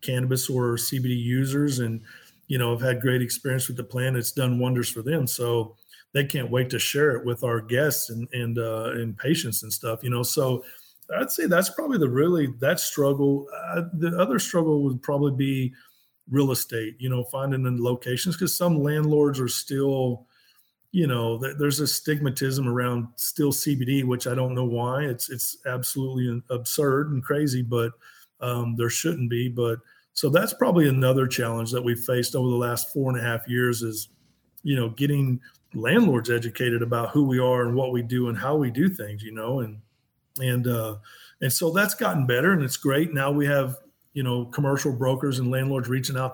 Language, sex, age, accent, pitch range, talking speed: English, male, 40-59, American, 120-140 Hz, 195 wpm